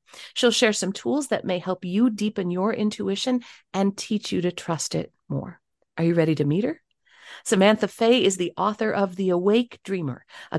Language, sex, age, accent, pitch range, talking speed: English, female, 40-59, American, 170-220 Hz, 195 wpm